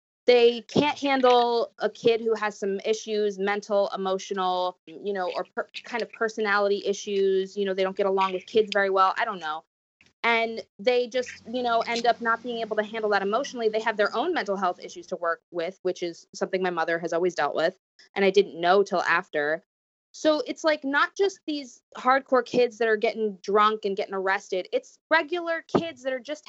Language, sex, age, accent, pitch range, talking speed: English, female, 20-39, American, 190-255 Hz, 205 wpm